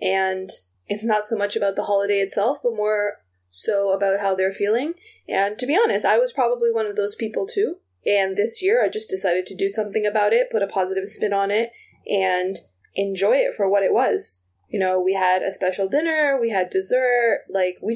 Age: 20-39